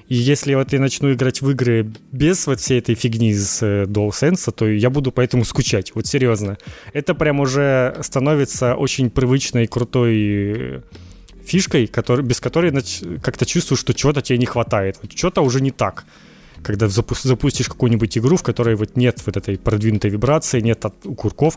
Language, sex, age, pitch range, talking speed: Ukrainian, male, 20-39, 110-135 Hz, 170 wpm